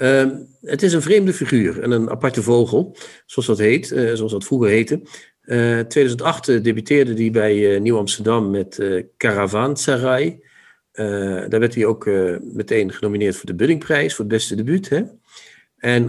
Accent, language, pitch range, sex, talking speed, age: Dutch, Dutch, 110-135 Hz, male, 180 wpm, 50-69